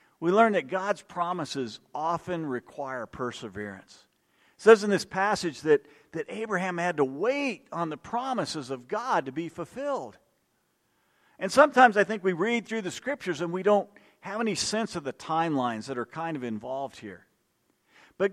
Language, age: English, 50-69